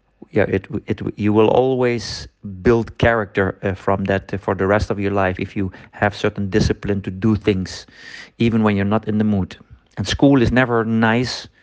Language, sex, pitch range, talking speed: Spanish, male, 100-120 Hz, 190 wpm